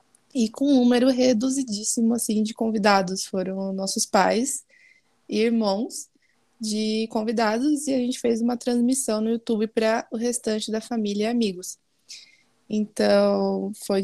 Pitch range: 200-230 Hz